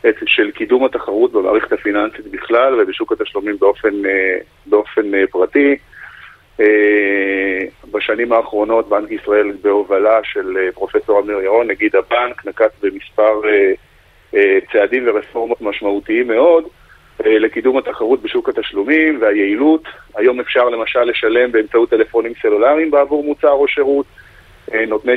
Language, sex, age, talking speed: Hebrew, male, 40-59, 105 wpm